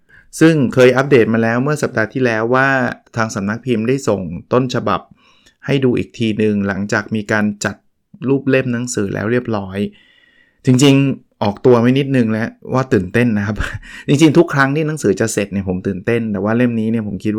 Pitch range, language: 100-125 Hz, Thai